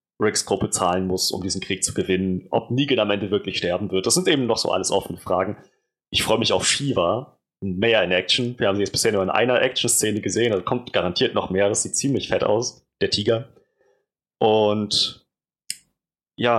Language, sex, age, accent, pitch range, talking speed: German, male, 30-49, German, 105-140 Hz, 205 wpm